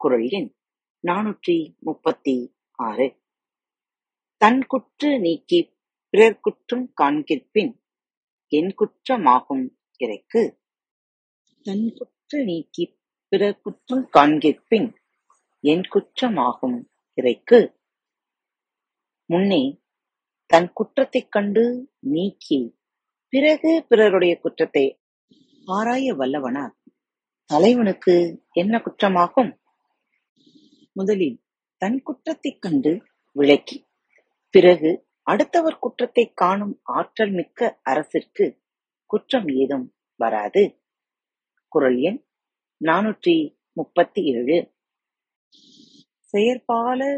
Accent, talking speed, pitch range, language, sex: native, 55 wpm, 170-260 Hz, Tamil, female